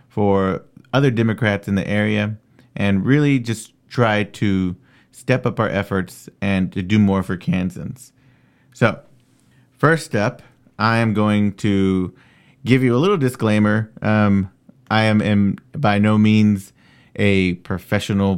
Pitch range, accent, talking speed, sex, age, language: 100-120 Hz, American, 135 wpm, male, 30-49, English